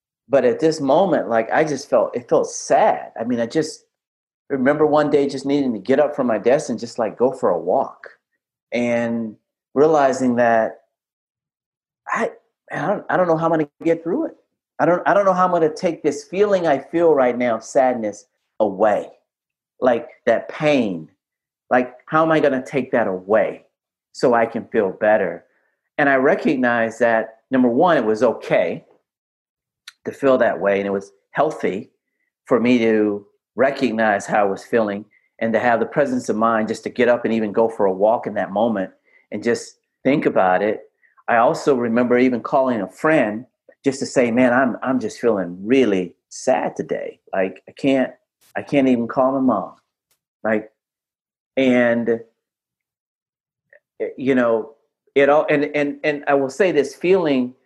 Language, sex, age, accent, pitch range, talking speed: English, male, 40-59, American, 115-150 Hz, 185 wpm